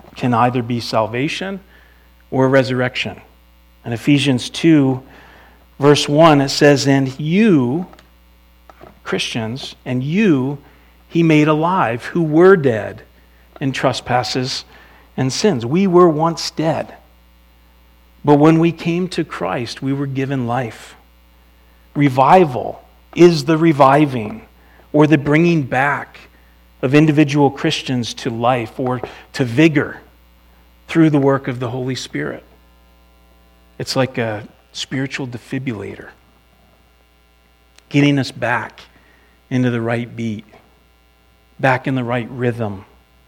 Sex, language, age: male, English, 40-59